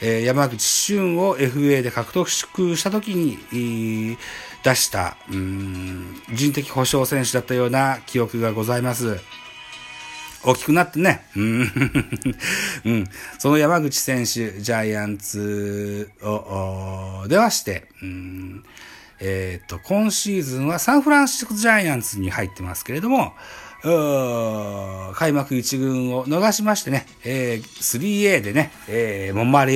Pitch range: 105-155 Hz